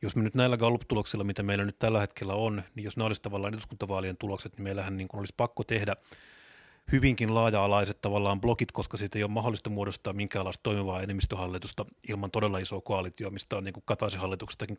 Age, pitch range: 30-49, 100-120 Hz